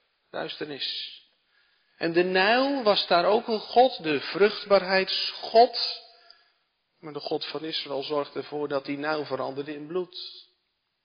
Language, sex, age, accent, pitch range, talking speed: Dutch, male, 40-59, Dutch, 140-200 Hz, 125 wpm